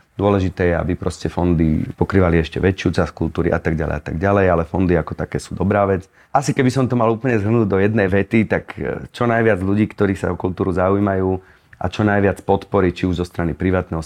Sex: male